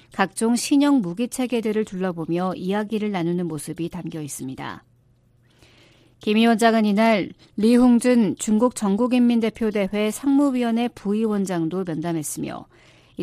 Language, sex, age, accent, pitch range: Korean, female, 50-69, native, 170-240 Hz